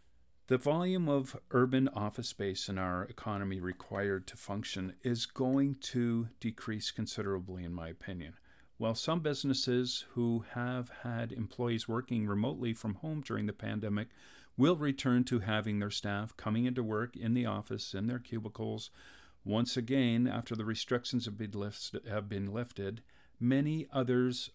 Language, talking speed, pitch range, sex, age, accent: English, 145 wpm, 105-125 Hz, male, 50-69, American